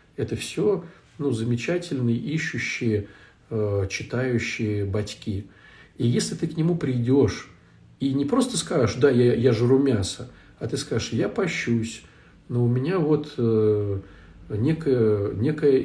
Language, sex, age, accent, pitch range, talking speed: Russian, male, 50-69, native, 110-145 Hz, 135 wpm